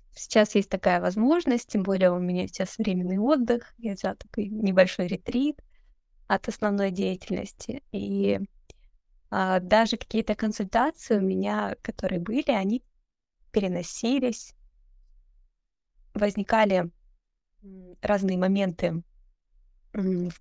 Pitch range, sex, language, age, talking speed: 180-220 Hz, female, Russian, 20-39, 95 wpm